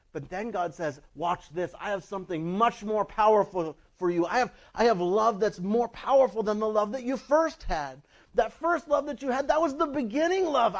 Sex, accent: male, American